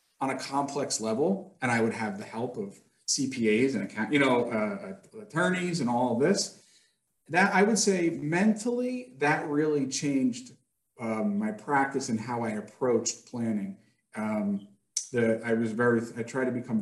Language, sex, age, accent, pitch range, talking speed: English, male, 40-59, American, 120-155 Hz, 170 wpm